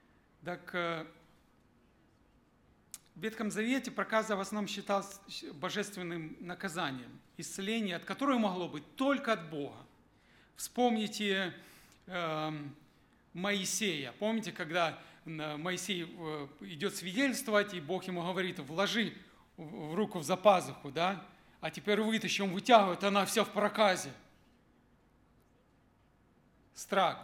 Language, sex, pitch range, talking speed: Russian, male, 165-210 Hz, 100 wpm